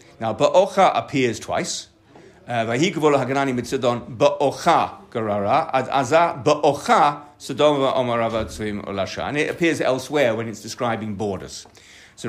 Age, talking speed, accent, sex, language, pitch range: 50-69, 70 wpm, British, male, English, 120-155 Hz